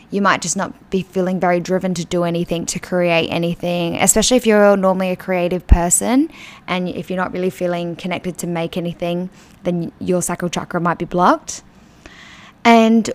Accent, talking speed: Australian, 180 wpm